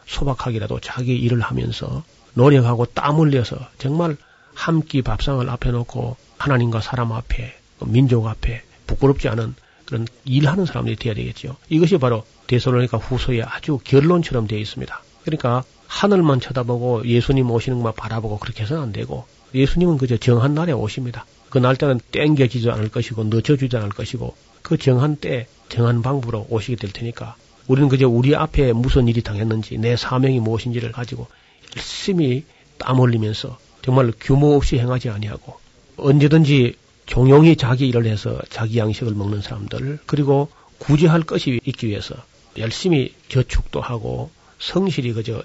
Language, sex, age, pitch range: Korean, male, 40-59, 115-140 Hz